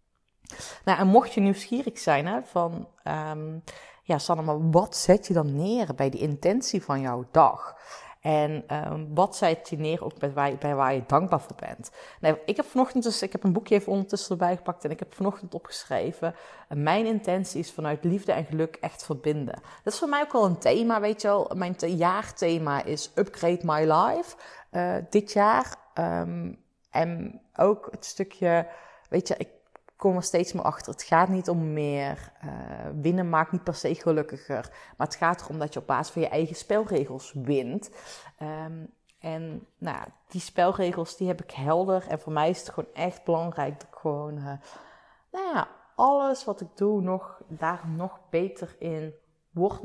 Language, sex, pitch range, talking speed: Dutch, female, 155-195 Hz, 190 wpm